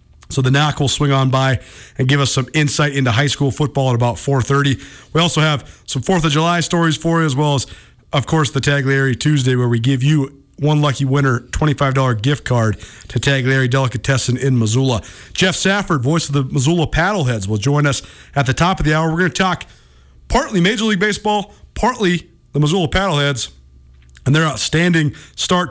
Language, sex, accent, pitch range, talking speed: English, male, American, 120-150 Hz, 195 wpm